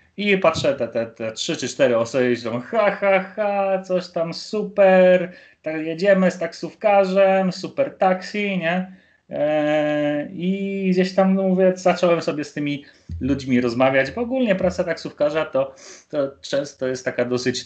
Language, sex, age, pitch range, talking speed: Polish, male, 30-49, 105-155 Hz, 145 wpm